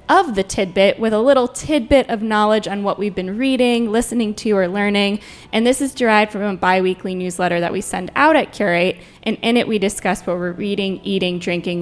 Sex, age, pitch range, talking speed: female, 20-39, 185-235 Hz, 215 wpm